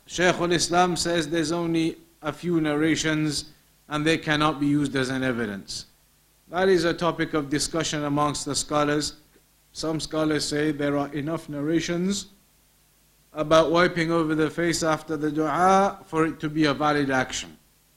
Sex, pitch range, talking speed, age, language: male, 145-175 Hz, 155 wpm, 50-69, English